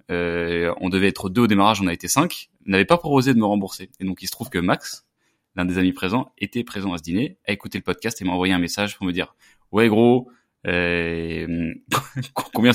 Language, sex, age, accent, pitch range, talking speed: French, male, 20-39, French, 90-115 Hz, 230 wpm